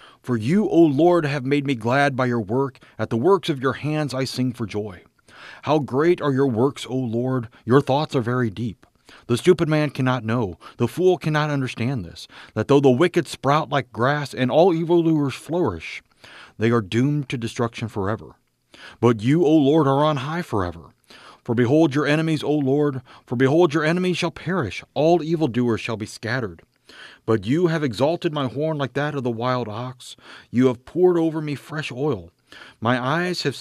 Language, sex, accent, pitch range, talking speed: English, male, American, 115-150 Hz, 190 wpm